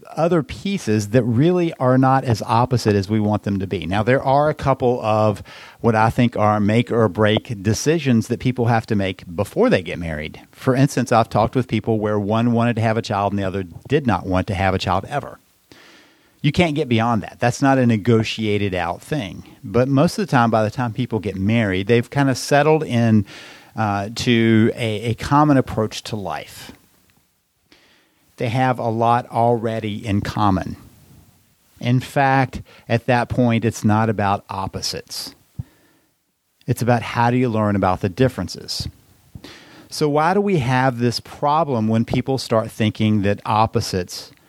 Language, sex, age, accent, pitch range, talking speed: English, male, 50-69, American, 105-125 Hz, 180 wpm